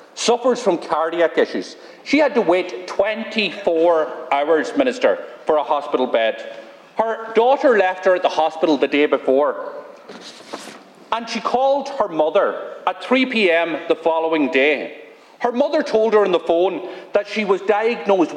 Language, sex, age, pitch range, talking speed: English, male, 40-59, 165-240 Hz, 150 wpm